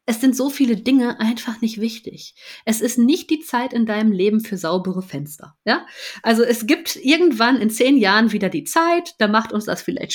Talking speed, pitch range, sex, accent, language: 205 wpm, 200-250 Hz, female, German, German